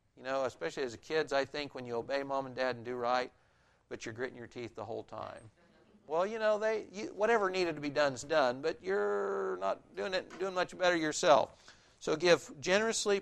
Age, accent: 60-79, American